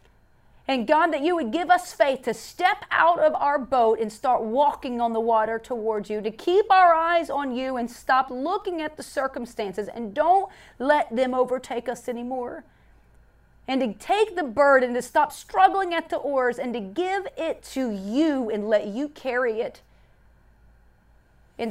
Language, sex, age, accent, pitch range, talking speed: English, female, 40-59, American, 225-325 Hz, 175 wpm